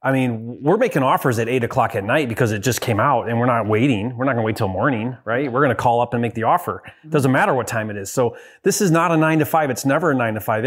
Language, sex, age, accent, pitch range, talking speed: English, male, 30-49, American, 125-160 Hz, 305 wpm